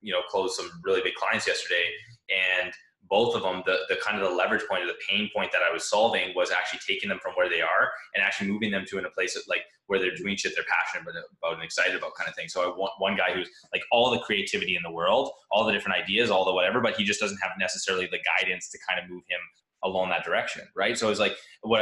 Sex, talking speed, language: male, 275 wpm, English